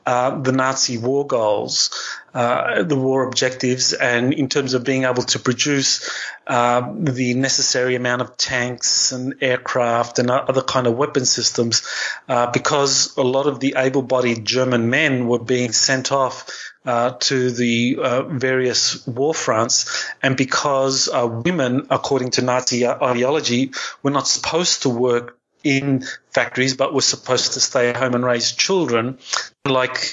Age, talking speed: 30-49, 155 wpm